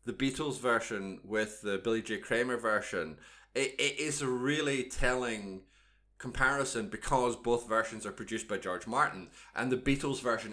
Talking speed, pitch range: 160 wpm, 110-140 Hz